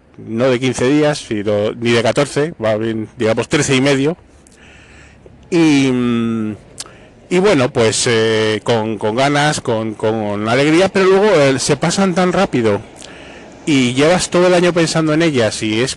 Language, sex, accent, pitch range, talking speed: English, male, Spanish, 115-150 Hz, 160 wpm